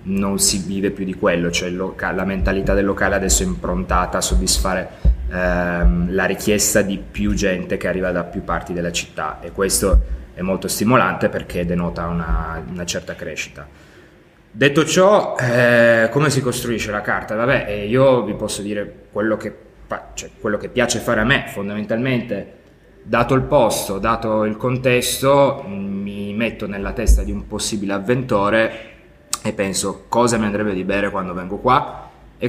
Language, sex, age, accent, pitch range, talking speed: Italian, male, 20-39, native, 95-120 Hz, 160 wpm